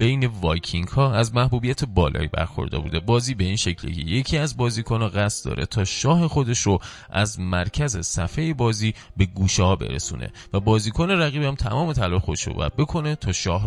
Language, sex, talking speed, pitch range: Persian, male, 180 wpm, 90-120 Hz